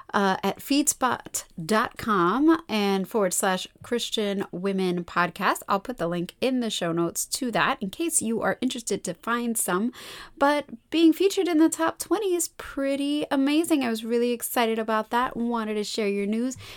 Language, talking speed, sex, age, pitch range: English, 170 wpm, female, 30-49, 185-255 Hz